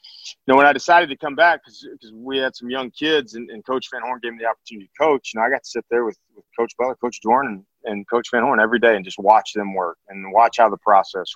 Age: 30-49